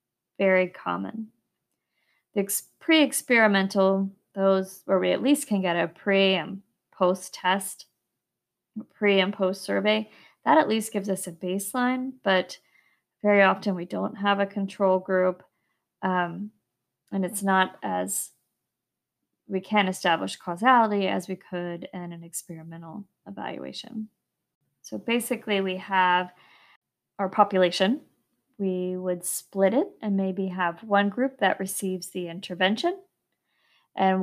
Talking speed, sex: 125 wpm, female